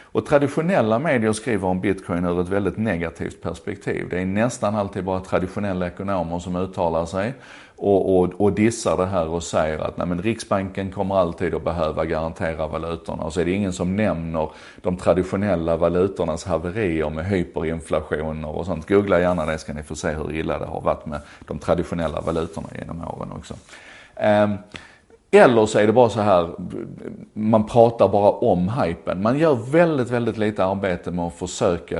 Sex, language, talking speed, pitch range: male, Swedish, 180 wpm, 85-110 Hz